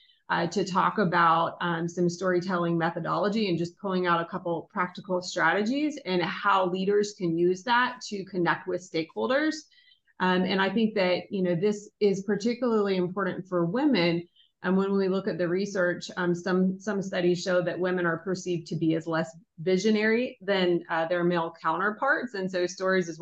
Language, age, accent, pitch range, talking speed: English, 30-49, American, 175-205 Hz, 180 wpm